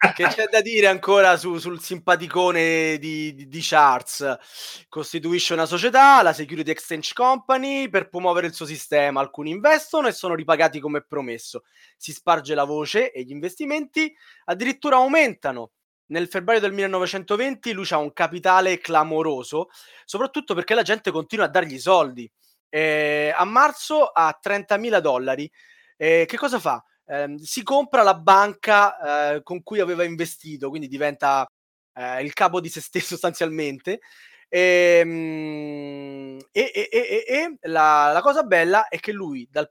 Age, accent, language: 20-39, native, Italian